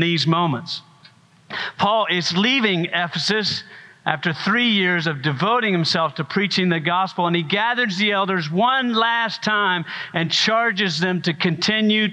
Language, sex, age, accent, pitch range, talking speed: English, male, 50-69, American, 155-205 Hz, 145 wpm